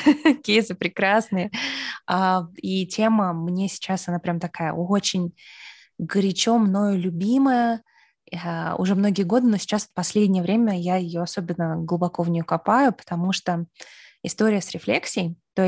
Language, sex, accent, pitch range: Russian, female, native, 175-215 Hz